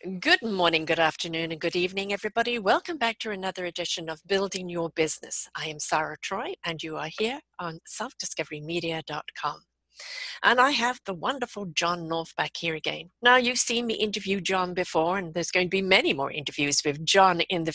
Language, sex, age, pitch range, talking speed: English, female, 50-69, 170-220 Hz, 190 wpm